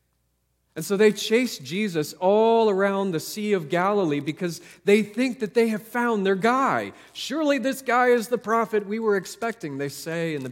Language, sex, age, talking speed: English, male, 40-59, 190 wpm